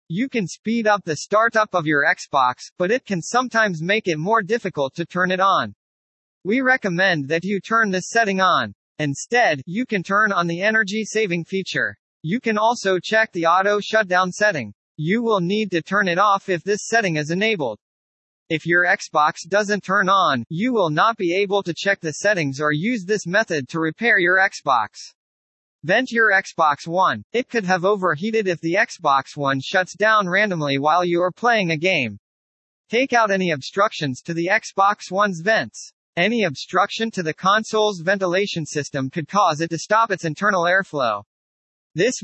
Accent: American